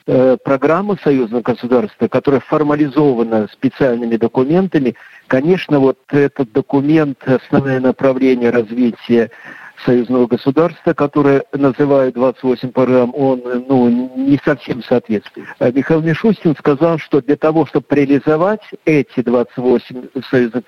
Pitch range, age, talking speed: 125-150 Hz, 50-69, 105 wpm